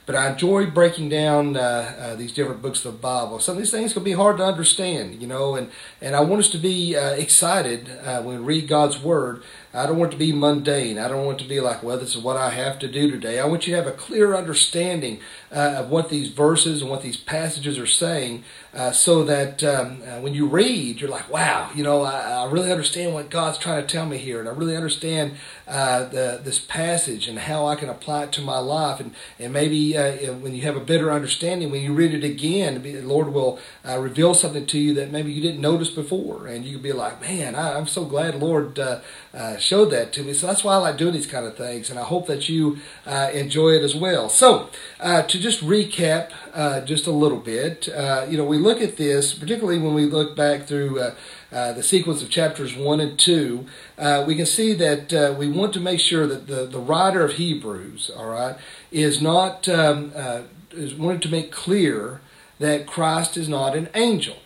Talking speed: 235 wpm